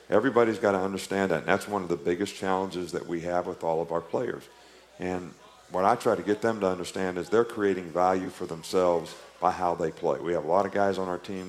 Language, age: English, 50-69